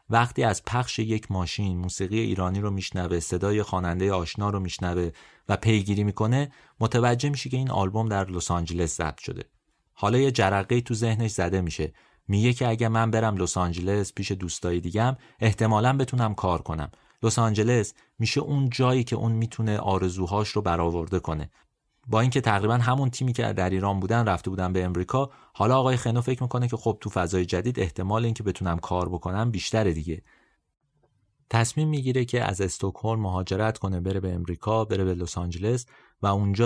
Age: 30-49